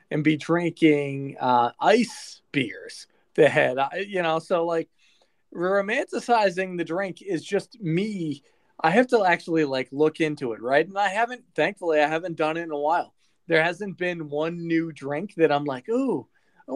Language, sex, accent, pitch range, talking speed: English, male, American, 150-195 Hz, 175 wpm